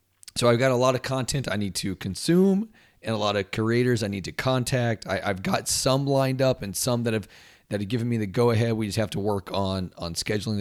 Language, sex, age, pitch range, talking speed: English, male, 40-59, 95-125 Hz, 250 wpm